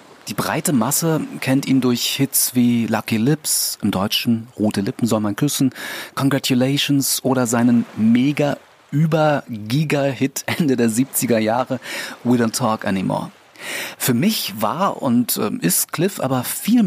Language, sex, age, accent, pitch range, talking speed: German, male, 30-49, German, 110-145 Hz, 130 wpm